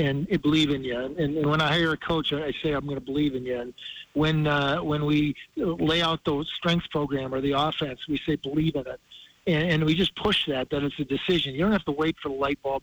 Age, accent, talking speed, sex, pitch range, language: 50-69, American, 255 wpm, male, 150-175 Hz, English